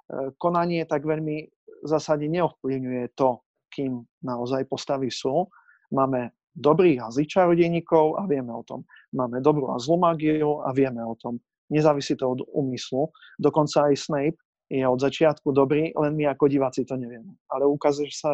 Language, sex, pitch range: Slovak, male, 130-155 Hz